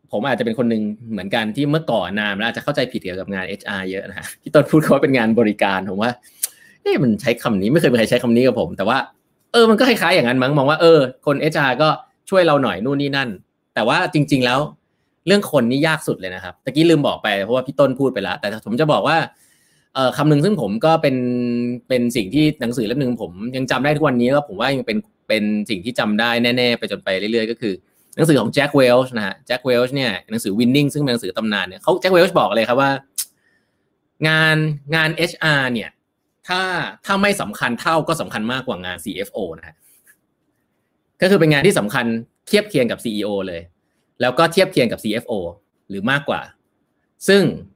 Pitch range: 115-155 Hz